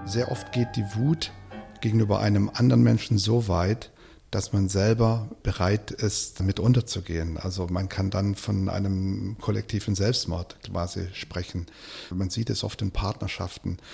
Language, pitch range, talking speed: German, 100-120 Hz, 145 wpm